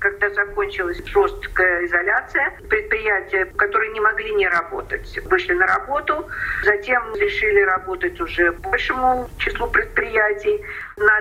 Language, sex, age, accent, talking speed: Russian, female, 50-69, native, 110 wpm